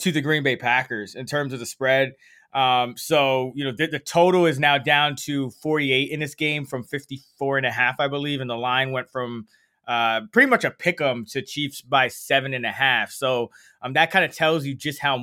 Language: English